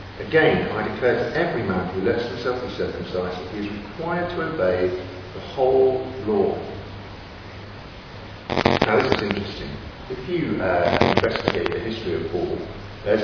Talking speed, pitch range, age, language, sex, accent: 150 wpm, 90-105 Hz, 50-69, English, male, British